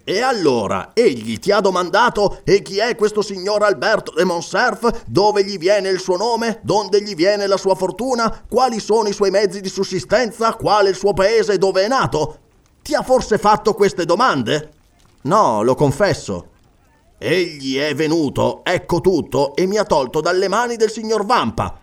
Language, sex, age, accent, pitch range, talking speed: Italian, male, 30-49, native, 145-215 Hz, 175 wpm